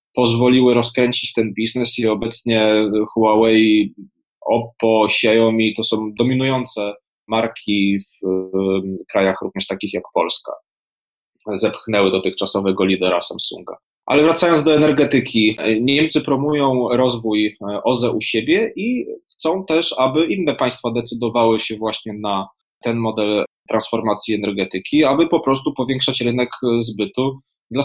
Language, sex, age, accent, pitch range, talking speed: Polish, male, 20-39, native, 105-125 Hz, 115 wpm